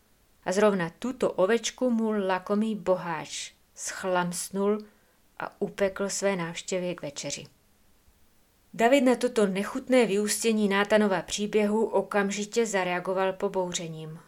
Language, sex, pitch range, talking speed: Czech, female, 170-205 Hz, 100 wpm